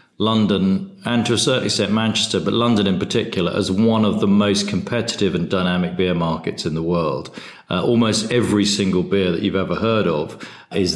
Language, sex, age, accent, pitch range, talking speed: Polish, male, 40-59, British, 95-115 Hz, 190 wpm